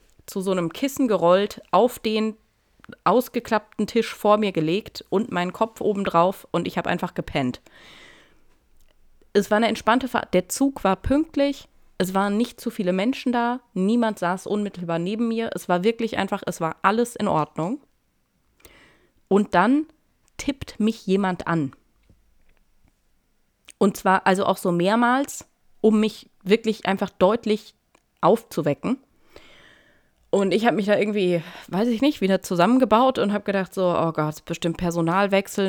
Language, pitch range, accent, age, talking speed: German, 175-225 Hz, German, 30-49, 150 wpm